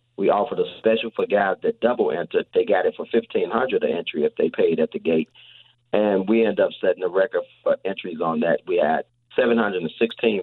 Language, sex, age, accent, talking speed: English, male, 40-59, American, 230 wpm